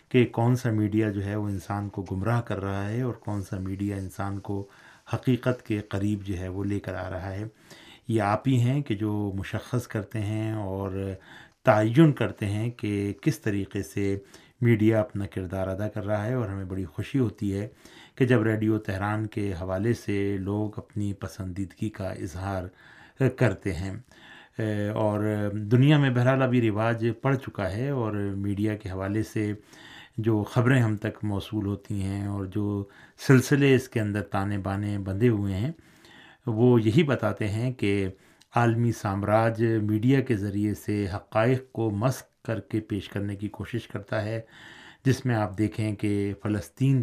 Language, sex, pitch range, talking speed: Urdu, male, 100-115 Hz, 170 wpm